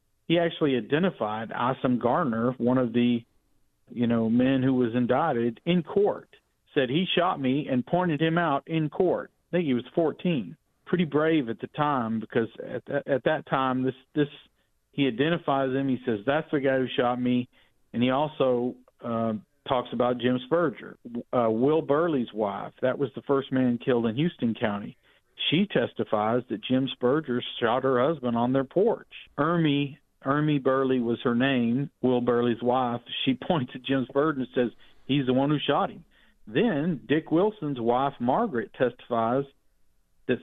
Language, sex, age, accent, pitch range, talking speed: English, male, 40-59, American, 120-140 Hz, 170 wpm